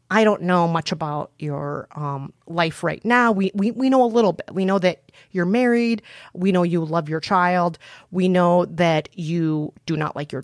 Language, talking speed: English, 205 wpm